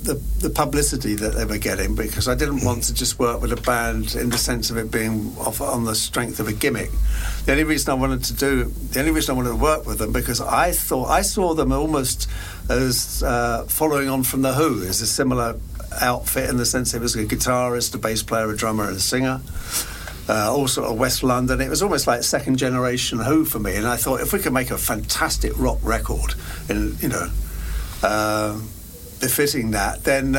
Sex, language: male, Finnish